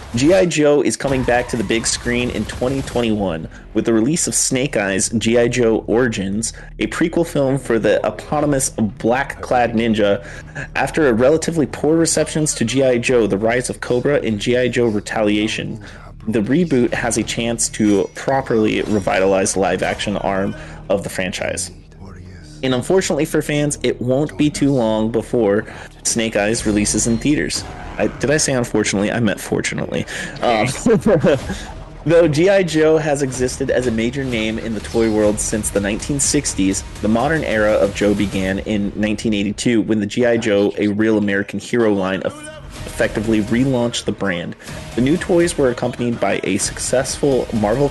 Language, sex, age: English, male, 30-49